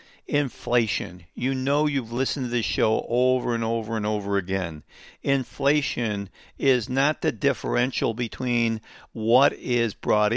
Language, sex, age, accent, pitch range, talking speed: English, male, 60-79, American, 120-175 Hz, 135 wpm